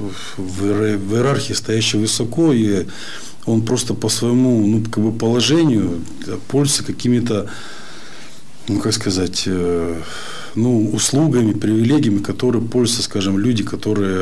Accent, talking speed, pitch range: native, 110 wpm, 100-120 Hz